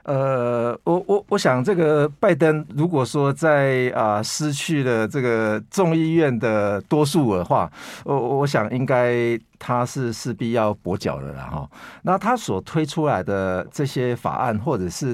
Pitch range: 110-160 Hz